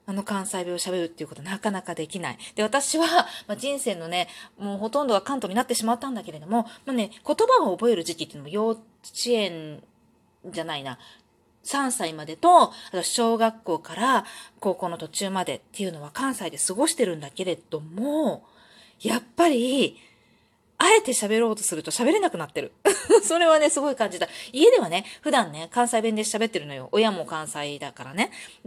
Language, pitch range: Japanese, 175-250 Hz